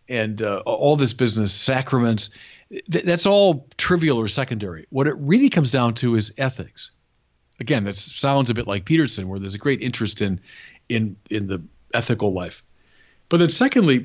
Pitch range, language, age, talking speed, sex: 110-160 Hz, English, 40-59, 175 wpm, male